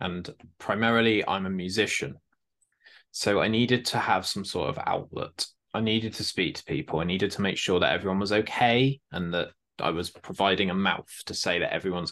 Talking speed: 200 wpm